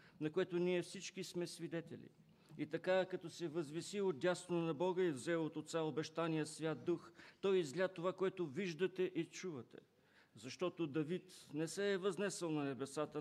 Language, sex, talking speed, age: English, male, 170 wpm, 50-69